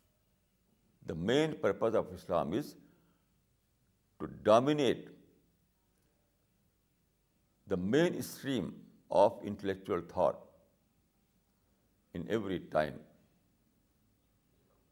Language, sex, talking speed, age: Urdu, male, 70 wpm, 60-79